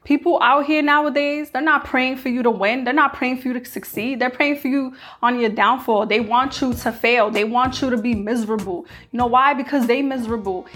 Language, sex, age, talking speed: English, female, 20-39, 235 wpm